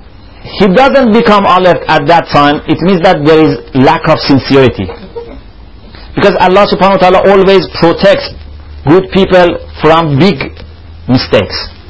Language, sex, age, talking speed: English, male, 50-69, 135 wpm